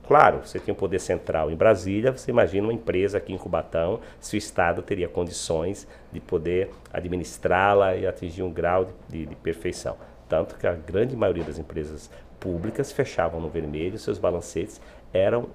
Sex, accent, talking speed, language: male, Brazilian, 175 wpm, Portuguese